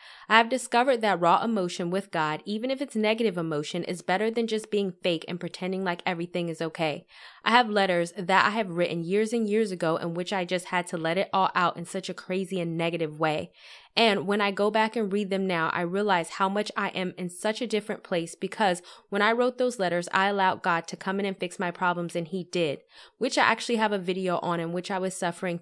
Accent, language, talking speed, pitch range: American, English, 245 wpm, 170-210 Hz